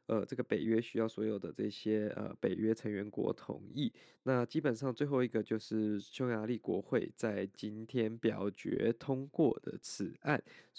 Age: 20-39